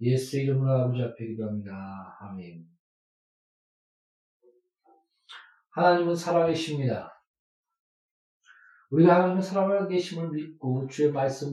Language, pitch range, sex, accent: Korean, 130-165 Hz, male, native